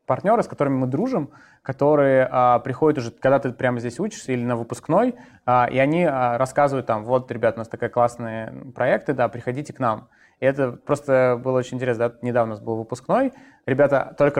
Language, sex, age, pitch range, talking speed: Russian, male, 20-39, 120-140 Hz, 200 wpm